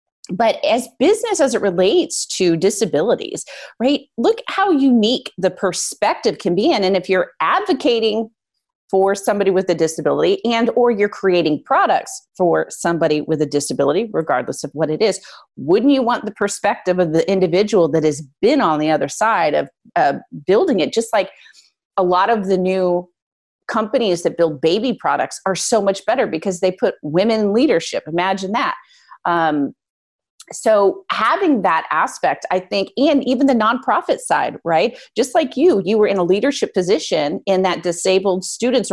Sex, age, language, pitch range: female, 30-49, English, 170-240 Hz